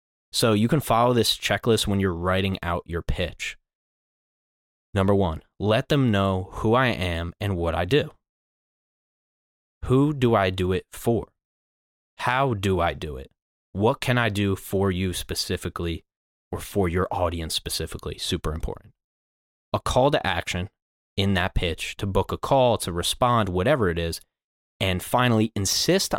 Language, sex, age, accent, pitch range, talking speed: English, male, 20-39, American, 85-110 Hz, 155 wpm